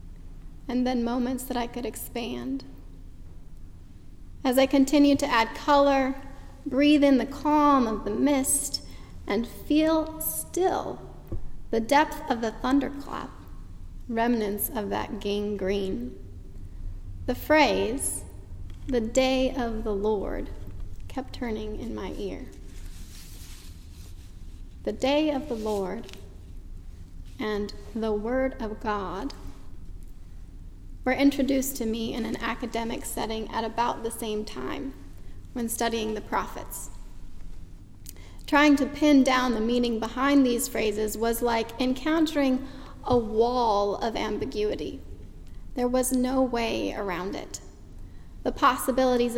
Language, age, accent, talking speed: English, 30-49, American, 115 wpm